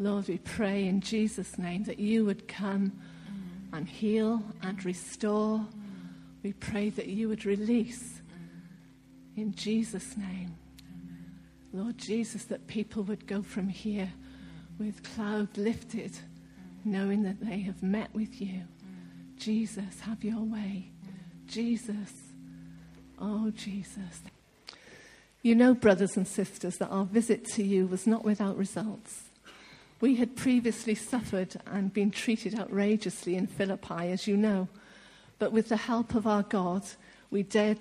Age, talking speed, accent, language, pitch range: 50-69, 135 wpm, British, English, 190-220 Hz